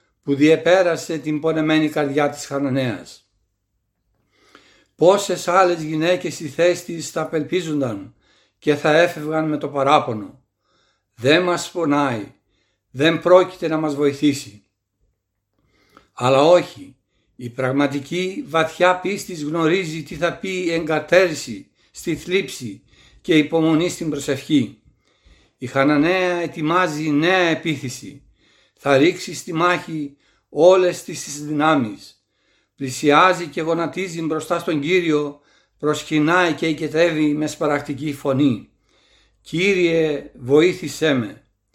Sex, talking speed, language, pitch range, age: male, 105 wpm, Greek, 140-170 Hz, 60-79